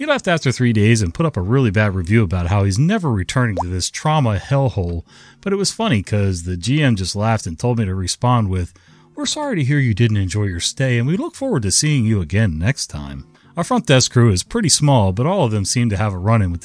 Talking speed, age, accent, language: 265 wpm, 30-49, American, English